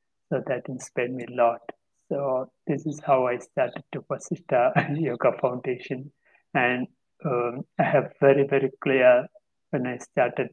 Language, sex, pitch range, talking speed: Greek, male, 125-140 Hz, 155 wpm